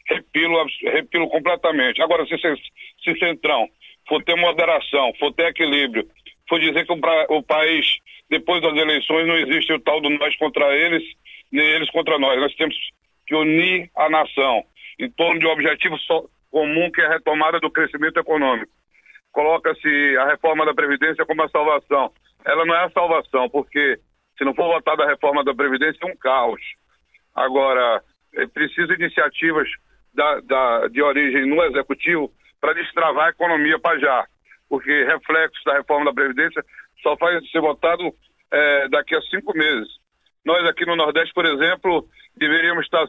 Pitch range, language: 145-165 Hz, Portuguese